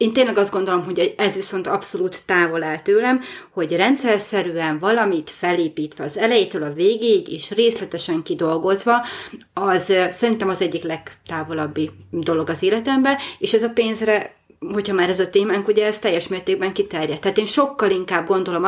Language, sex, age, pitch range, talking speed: Hungarian, female, 30-49, 170-210 Hz, 155 wpm